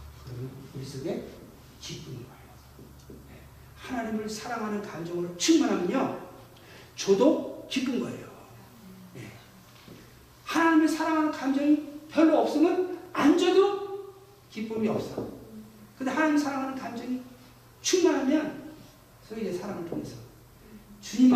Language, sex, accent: Korean, male, native